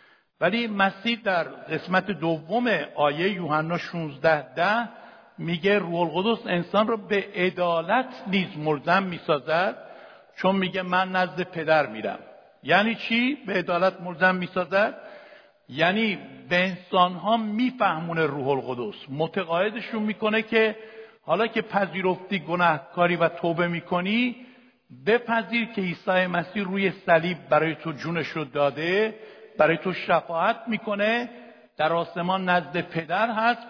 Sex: male